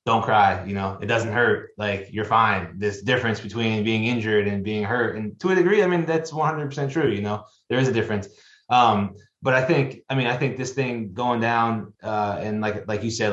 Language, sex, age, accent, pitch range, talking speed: English, male, 20-39, American, 100-120 Hz, 230 wpm